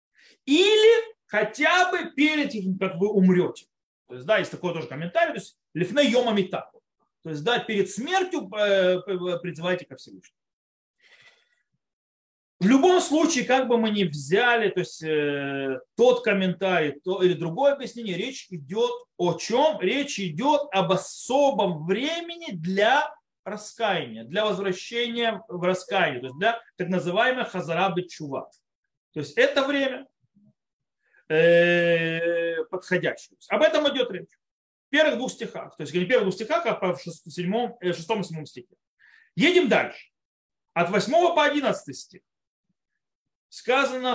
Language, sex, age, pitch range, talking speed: Russian, male, 30-49, 175-270 Hz, 135 wpm